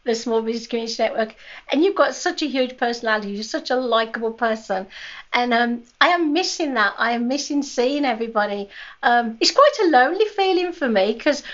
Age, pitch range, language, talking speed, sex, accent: 50-69, 230-310 Hz, English, 190 wpm, female, British